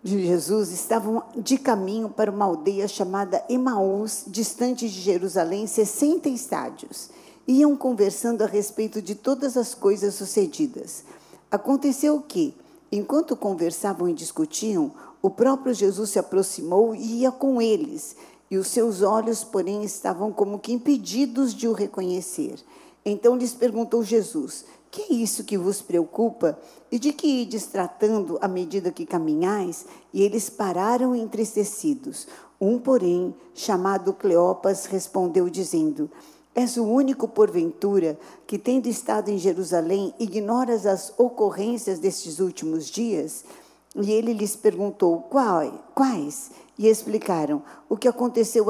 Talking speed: 130 wpm